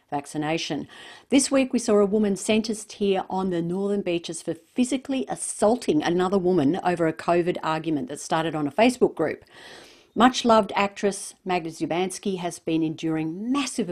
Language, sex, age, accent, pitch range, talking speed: English, female, 50-69, Australian, 155-195 Hz, 155 wpm